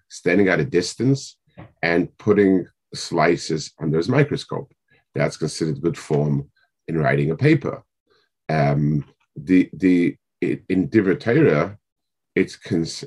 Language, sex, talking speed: English, male, 120 wpm